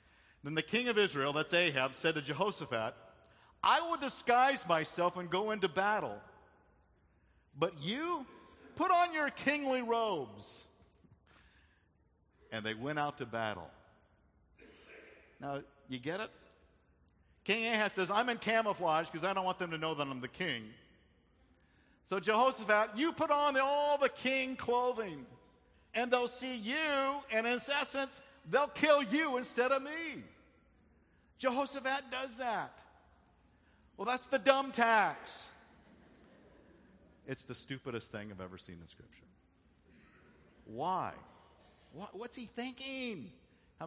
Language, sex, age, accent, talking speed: English, male, 50-69, American, 130 wpm